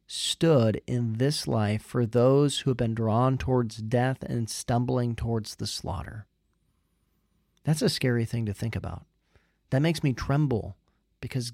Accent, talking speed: American, 150 wpm